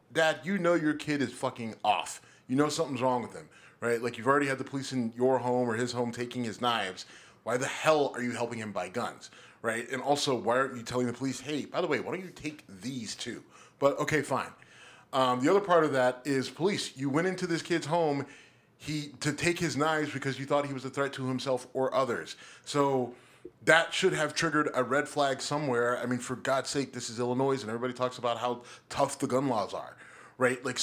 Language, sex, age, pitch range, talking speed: English, male, 30-49, 120-145 Hz, 235 wpm